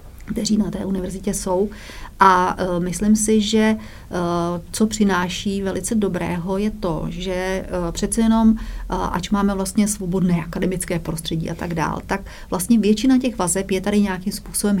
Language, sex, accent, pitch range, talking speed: Czech, female, native, 180-210 Hz, 160 wpm